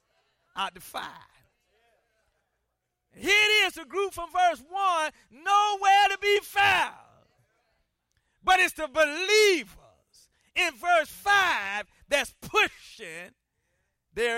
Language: English